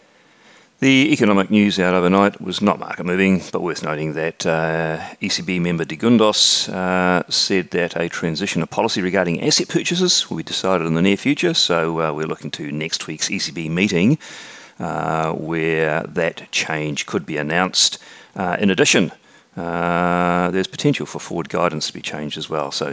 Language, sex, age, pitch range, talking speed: English, male, 40-59, 85-110 Hz, 175 wpm